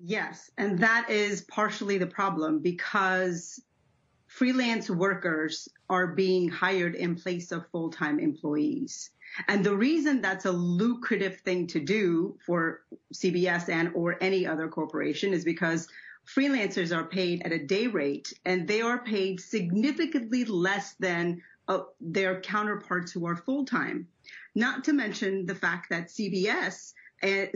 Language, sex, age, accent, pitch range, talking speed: English, female, 30-49, American, 175-220 Hz, 140 wpm